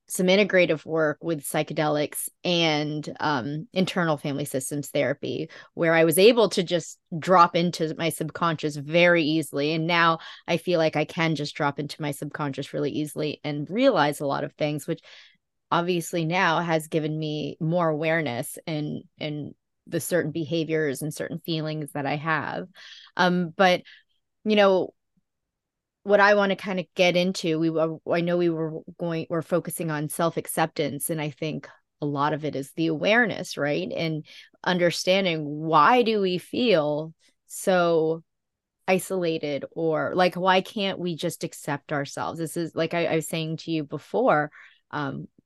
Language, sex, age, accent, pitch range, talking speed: English, female, 20-39, American, 150-175 Hz, 160 wpm